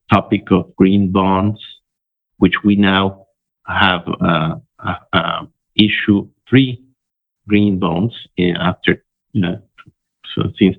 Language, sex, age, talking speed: English, male, 50-69, 110 wpm